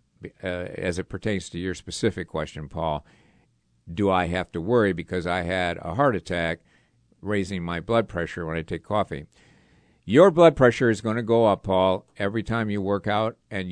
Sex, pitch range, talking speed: male, 90-120 Hz, 190 wpm